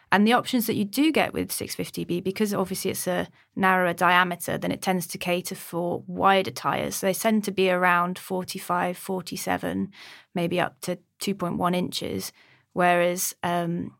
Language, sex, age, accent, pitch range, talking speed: English, female, 30-49, British, 175-200 Hz, 160 wpm